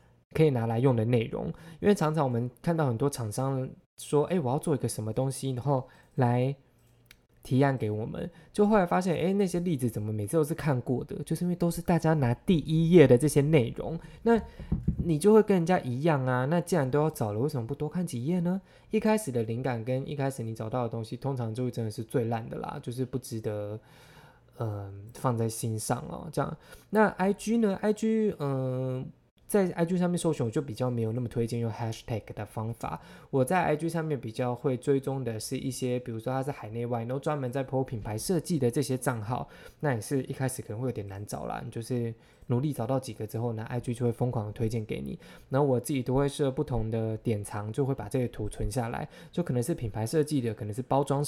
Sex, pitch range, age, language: male, 115-155 Hz, 20-39, Chinese